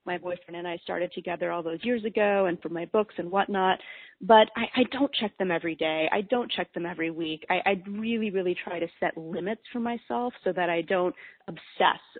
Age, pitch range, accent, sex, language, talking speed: 30-49, 175-215 Hz, American, female, English, 220 wpm